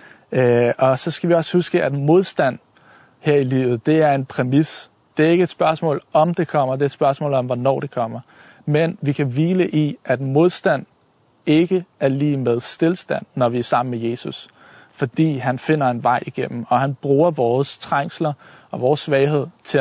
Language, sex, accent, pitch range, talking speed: Danish, male, native, 125-150 Hz, 195 wpm